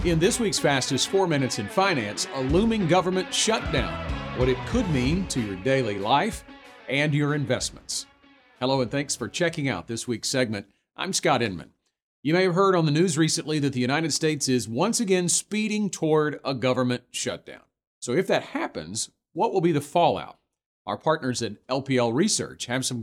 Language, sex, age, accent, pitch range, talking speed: English, male, 40-59, American, 125-170 Hz, 185 wpm